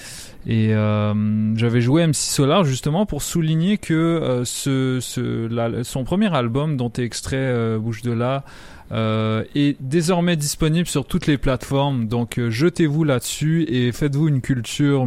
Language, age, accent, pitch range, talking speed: French, 20-39, French, 115-145 Hz, 160 wpm